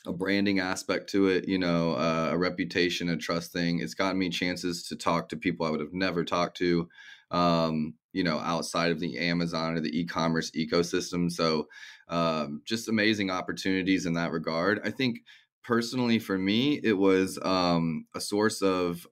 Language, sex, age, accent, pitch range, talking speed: English, male, 20-39, American, 85-95 Hz, 180 wpm